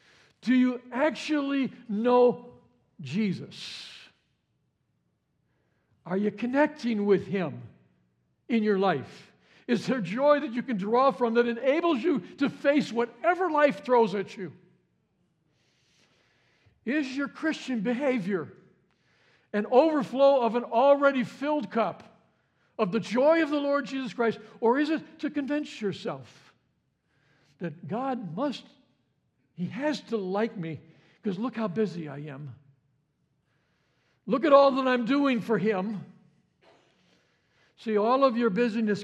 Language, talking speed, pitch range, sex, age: English, 130 wpm, 150-250 Hz, male, 60-79